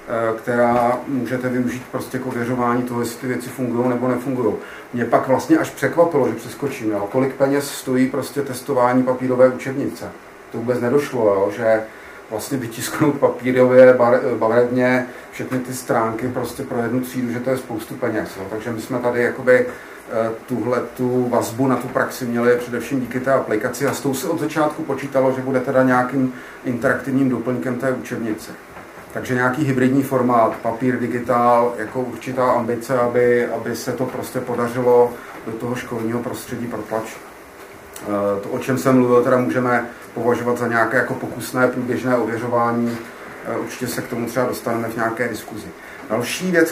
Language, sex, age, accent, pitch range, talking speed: Czech, male, 40-59, native, 120-130 Hz, 160 wpm